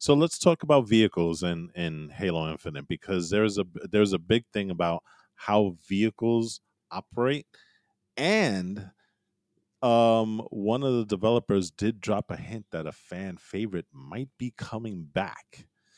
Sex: male